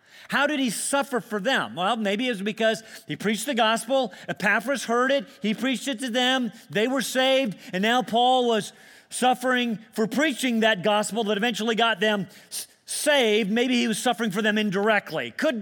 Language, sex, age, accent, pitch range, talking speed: English, male, 40-59, American, 200-250 Hz, 185 wpm